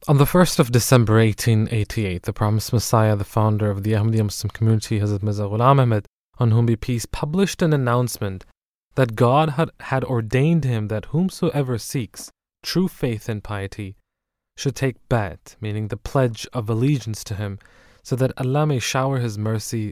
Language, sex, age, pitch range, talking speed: English, male, 20-39, 105-135 Hz, 170 wpm